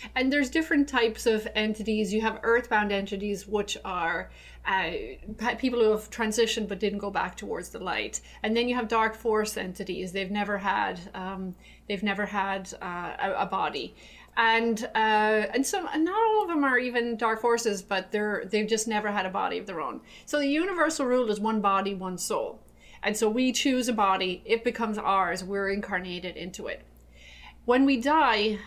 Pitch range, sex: 200-245 Hz, female